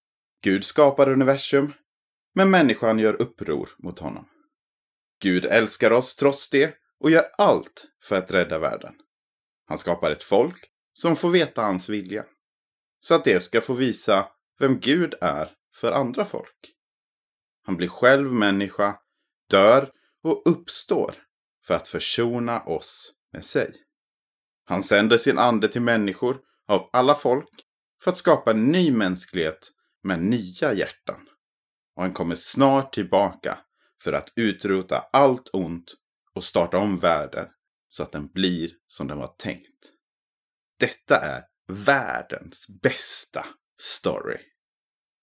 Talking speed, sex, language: 135 wpm, male, Swedish